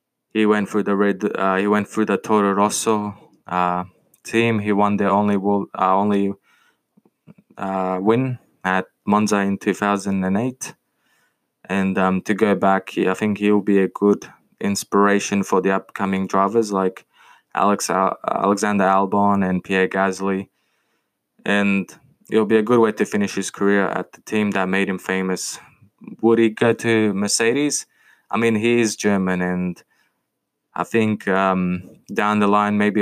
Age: 20-39